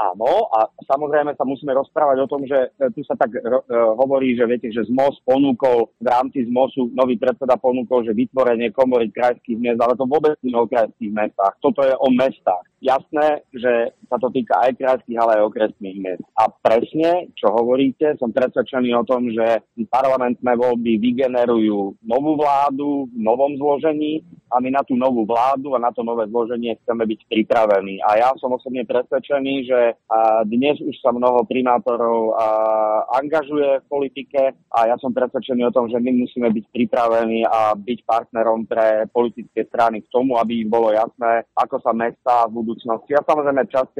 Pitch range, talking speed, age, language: 110-130 Hz, 180 wpm, 40-59, Slovak